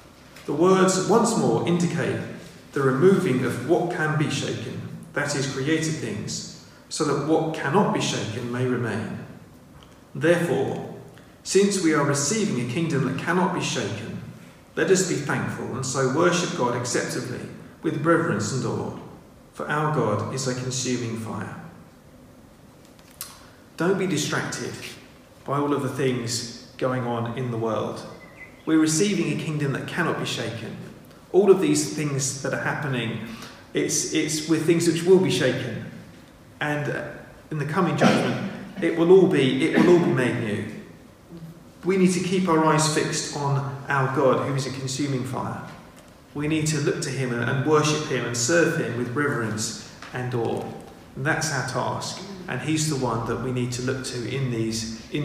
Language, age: English, 40-59